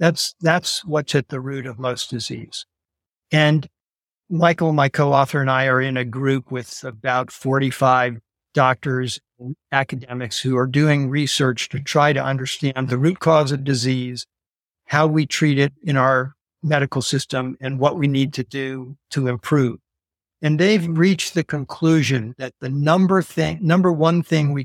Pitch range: 130-155 Hz